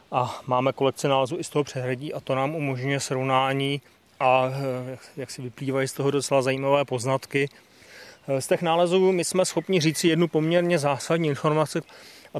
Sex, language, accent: male, Czech, native